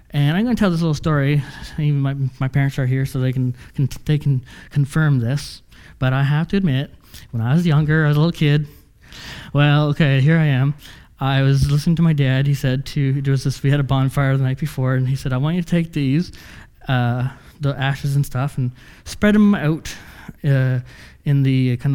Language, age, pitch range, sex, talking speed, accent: English, 20-39, 135-170 Hz, male, 225 wpm, American